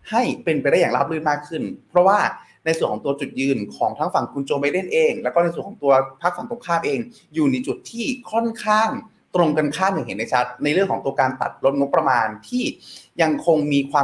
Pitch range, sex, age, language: 135-210 Hz, male, 20-39, Thai